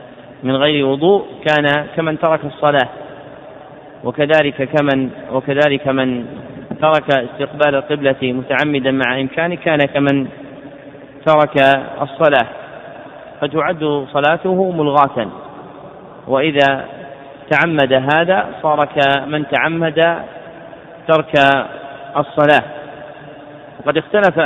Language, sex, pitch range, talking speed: Arabic, male, 135-150 Hz, 85 wpm